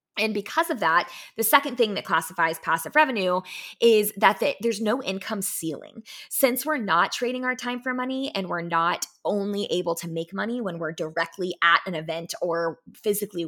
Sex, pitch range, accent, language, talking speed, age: female, 170-250 Hz, American, English, 185 wpm, 20-39